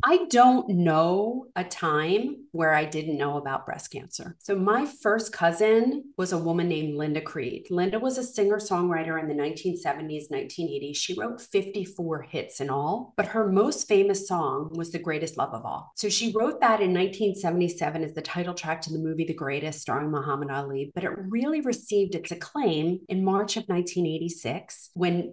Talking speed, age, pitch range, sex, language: 180 wpm, 40-59, 165-215 Hz, female, English